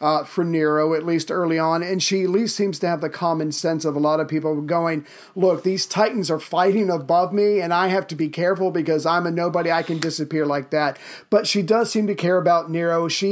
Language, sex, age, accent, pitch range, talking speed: English, male, 40-59, American, 165-205 Hz, 245 wpm